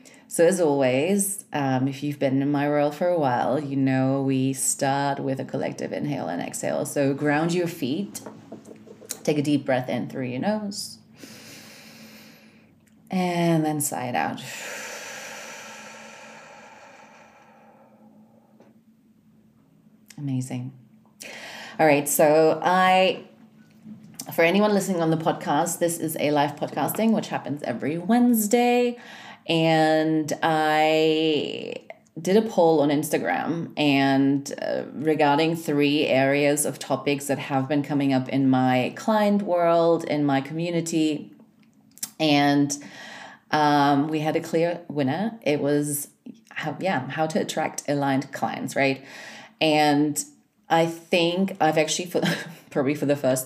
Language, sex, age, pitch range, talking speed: English, female, 30-49, 140-205 Hz, 125 wpm